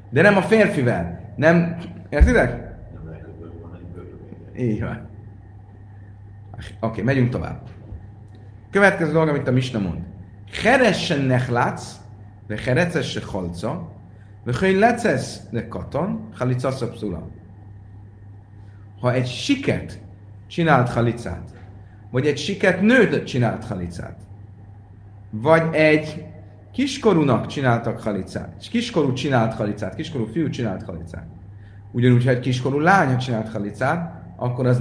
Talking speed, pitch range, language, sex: 100 wpm, 100-140 Hz, Hungarian, male